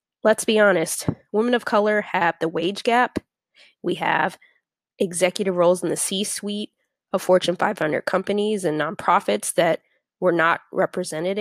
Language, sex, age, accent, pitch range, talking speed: English, female, 20-39, American, 170-210 Hz, 140 wpm